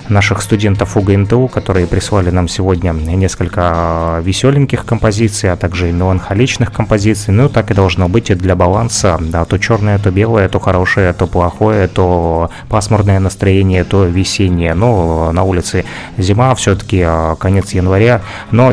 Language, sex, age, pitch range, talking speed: Russian, male, 20-39, 90-105 Hz, 145 wpm